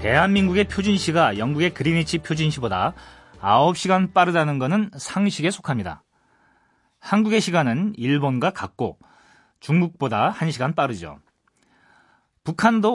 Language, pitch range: Korean, 135-195 Hz